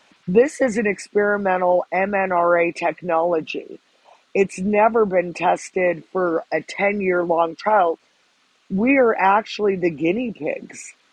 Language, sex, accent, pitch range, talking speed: English, female, American, 170-200 Hz, 110 wpm